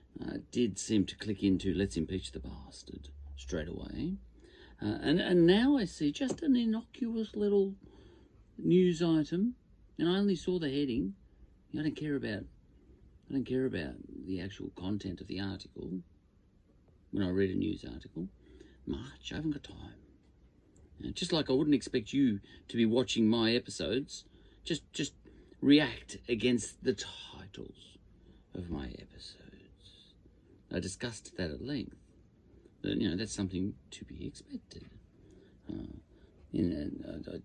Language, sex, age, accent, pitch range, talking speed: English, male, 50-69, Australian, 90-130 Hz, 150 wpm